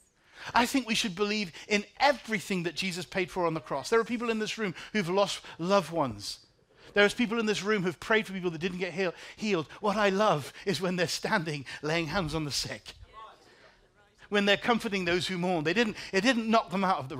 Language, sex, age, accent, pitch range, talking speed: English, male, 40-59, British, 160-230 Hz, 230 wpm